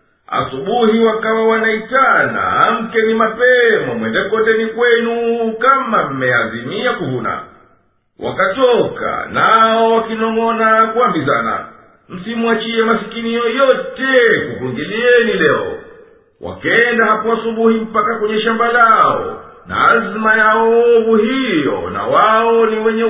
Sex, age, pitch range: male, 50-69, 225-245 Hz